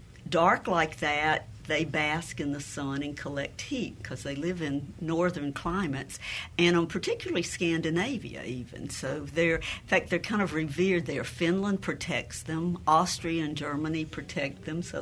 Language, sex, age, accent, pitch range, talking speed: English, female, 60-79, American, 140-170 Hz, 160 wpm